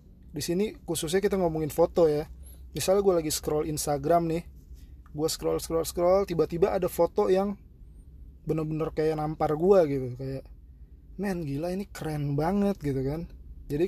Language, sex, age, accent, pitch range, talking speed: Indonesian, male, 30-49, native, 135-175 Hz, 150 wpm